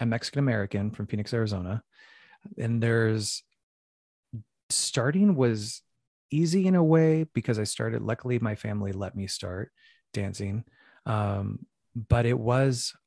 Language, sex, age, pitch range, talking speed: English, male, 30-49, 100-120 Hz, 125 wpm